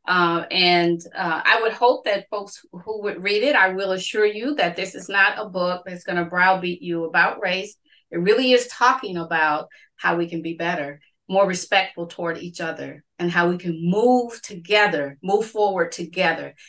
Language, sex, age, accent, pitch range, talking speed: English, female, 40-59, American, 170-230 Hz, 185 wpm